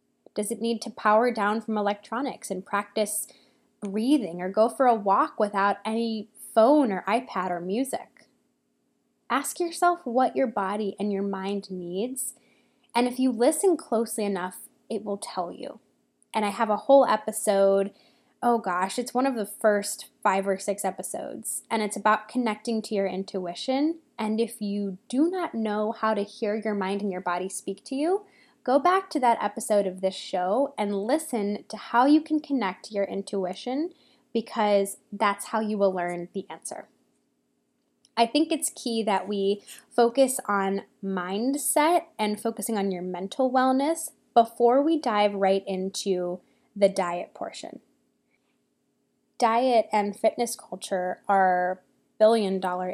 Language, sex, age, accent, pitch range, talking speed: English, female, 10-29, American, 195-245 Hz, 155 wpm